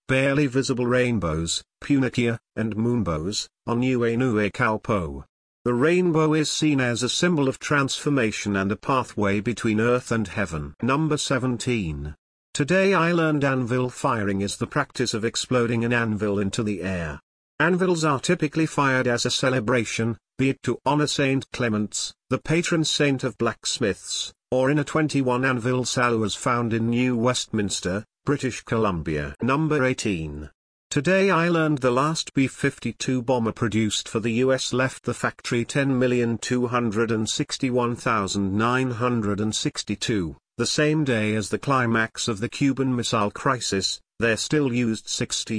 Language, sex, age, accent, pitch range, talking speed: English, male, 50-69, British, 110-135 Hz, 135 wpm